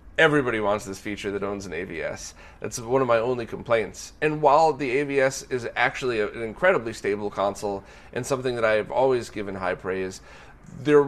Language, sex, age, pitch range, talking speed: English, male, 30-49, 115-160 Hz, 185 wpm